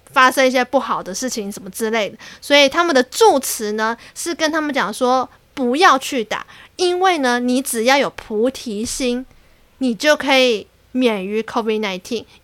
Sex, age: female, 20-39